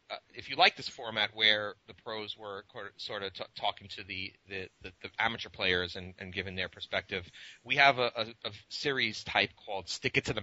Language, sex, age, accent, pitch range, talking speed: English, male, 30-49, American, 95-115 Hz, 220 wpm